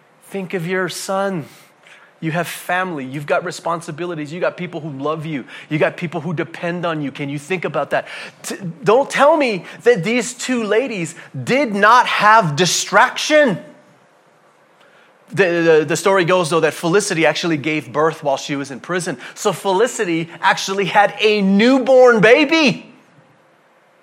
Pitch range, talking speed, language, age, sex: 155-225 Hz, 155 wpm, English, 30-49, male